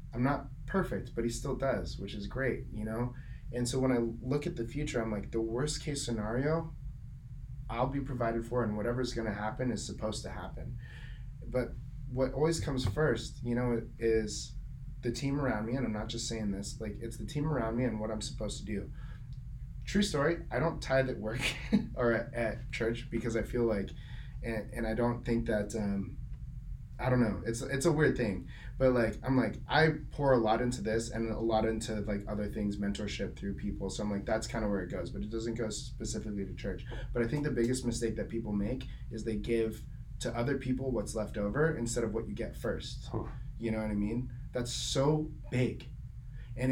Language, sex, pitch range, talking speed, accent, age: English, male, 110-130 Hz, 215 wpm, American, 20-39